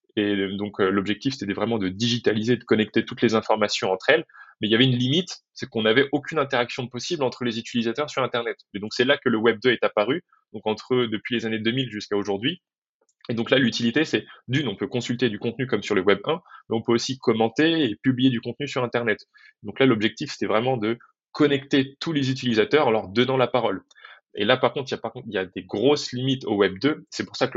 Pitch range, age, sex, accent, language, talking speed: 110-130 Hz, 20-39, male, French, French, 240 wpm